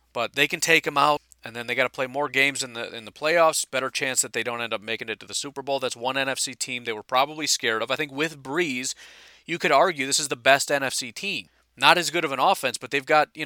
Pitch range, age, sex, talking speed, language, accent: 115-145 Hz, 40-59, male, 285 wpm, English, American